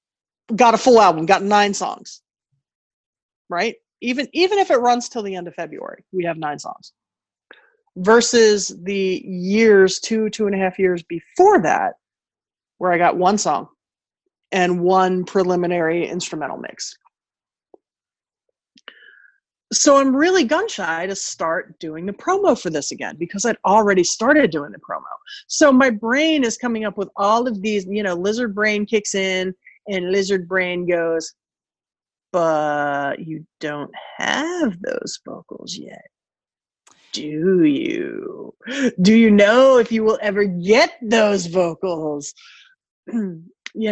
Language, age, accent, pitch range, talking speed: English, 30-49, American, 180-245 Hz, 140 wpm